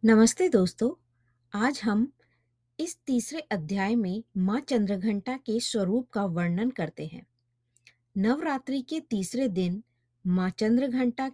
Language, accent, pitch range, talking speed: Hindi, native, 170-240 Hz, 115 wpm